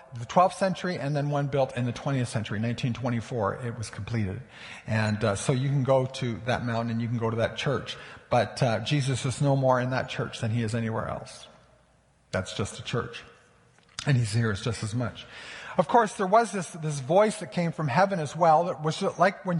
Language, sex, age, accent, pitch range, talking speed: English, male, 50-69, American, 130-175 Hz, 225 wpm